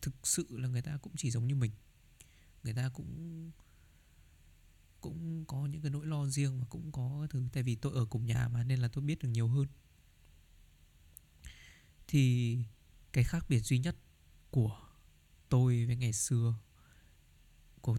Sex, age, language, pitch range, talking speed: male, 20-39, Vietnamese, 85-130 Hz, 165 wpm